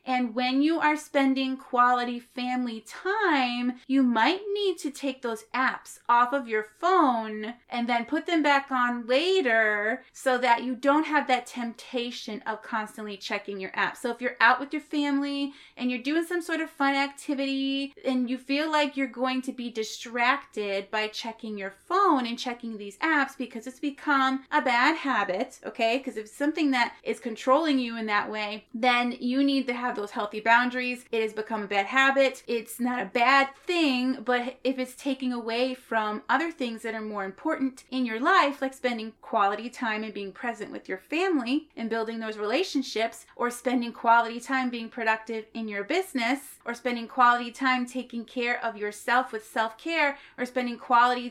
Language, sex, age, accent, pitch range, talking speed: English, female, 30-49, American, 225-275 Hz, 185 wpm